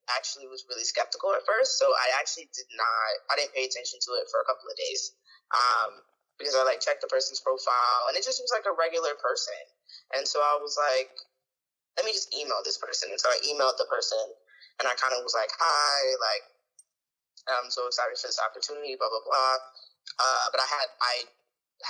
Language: English